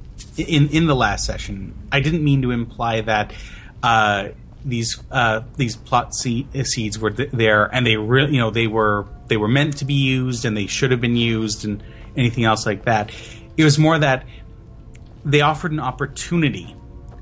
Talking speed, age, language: 185 wpm, 30-49, English